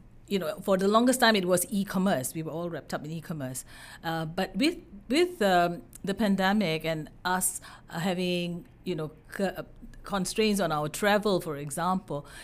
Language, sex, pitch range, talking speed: English, female, 165-225 Hz, 170 wpm